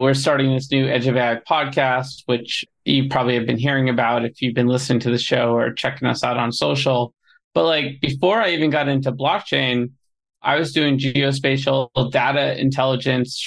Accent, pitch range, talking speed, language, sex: American, 130-140 Hz, 185 wpm, English, male